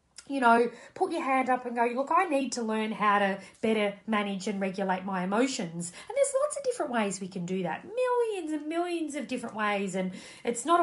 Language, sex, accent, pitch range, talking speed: English, female, Australian, 190-295 Hz, 220 wpm